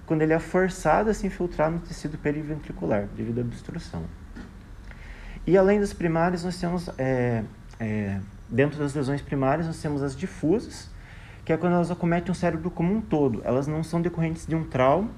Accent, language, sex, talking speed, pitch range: Brazilian, Portuguese, male, 180 wpm, 130-170 Hz